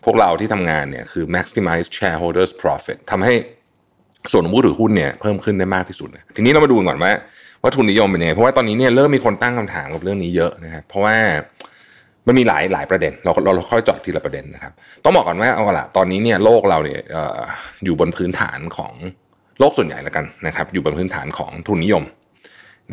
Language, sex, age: Thai, male, 30-49